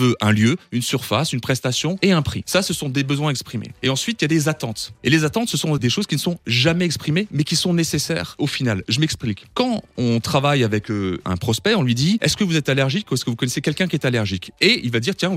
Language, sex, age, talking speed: French, male, 30-49, 275 wpm